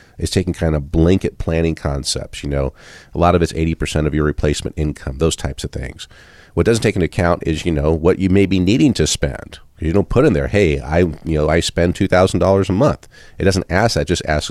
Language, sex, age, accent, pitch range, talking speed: English, male, 40-59, American, 75-95 Hz, 235 wpm